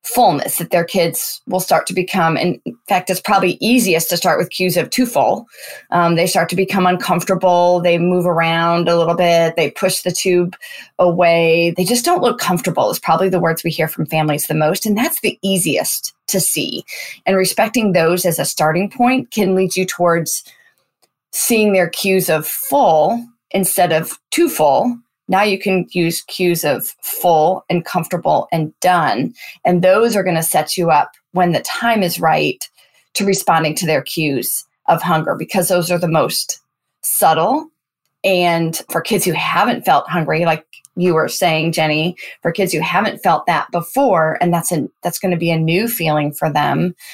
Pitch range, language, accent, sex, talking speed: 165-190 Hz, English, American, female, 185 wpm